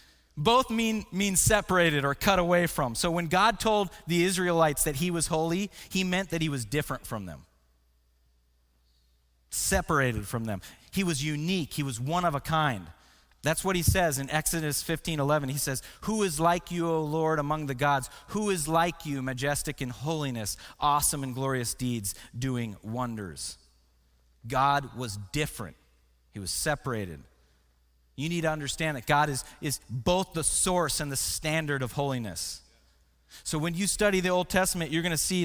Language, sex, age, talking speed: English, male, 30-49, 175 wpm